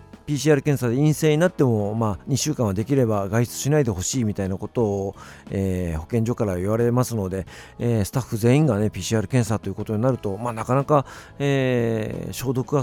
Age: 50-69